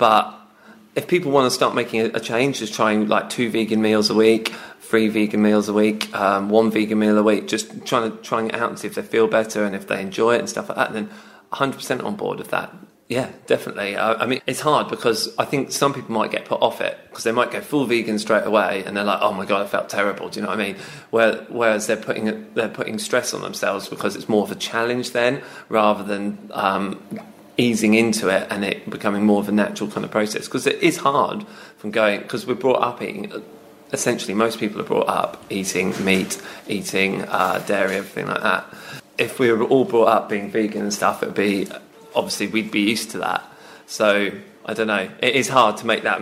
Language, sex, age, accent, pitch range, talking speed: English, male, 20-39, British, 105-115 Hz, 235 wpm